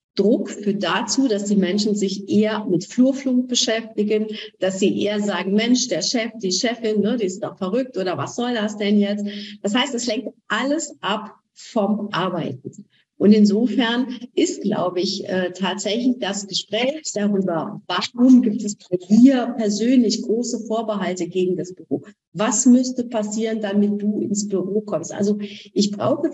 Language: German